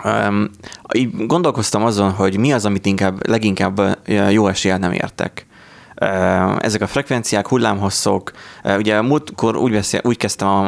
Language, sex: Hungarian, male